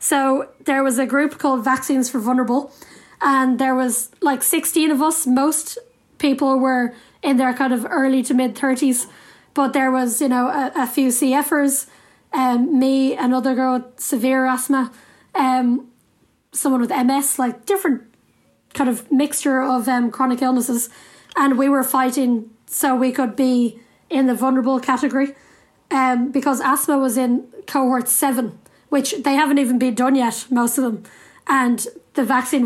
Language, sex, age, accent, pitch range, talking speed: English, female, 10-29, Irish, 255-275 Hz, 160 wpm